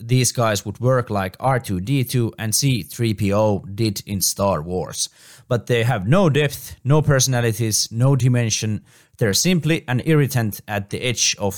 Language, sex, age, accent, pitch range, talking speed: Finnish, male, 20-39, native, 105-140 Hz, 150 wpm